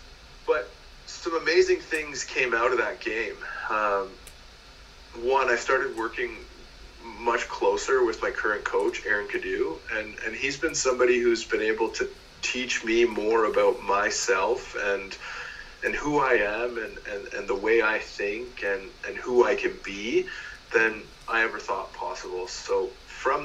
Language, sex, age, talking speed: English, male, 30-49, 155 wpm